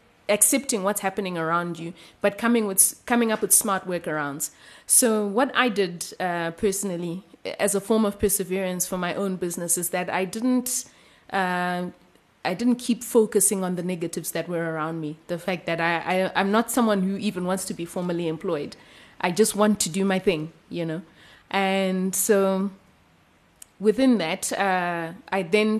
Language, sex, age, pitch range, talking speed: English, female, 20-39, 180-210 Hz, 175 wpm